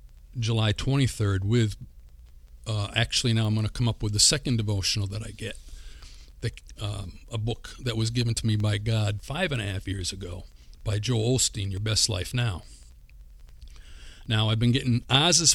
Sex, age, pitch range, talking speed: male, 50-69, 90-125 Hz, 180 wpm